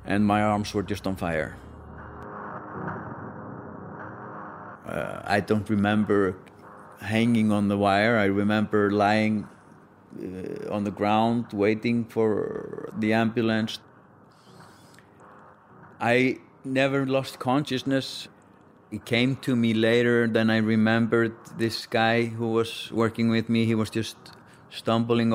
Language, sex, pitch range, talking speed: English, male, 105-115 Hz, 115 wpm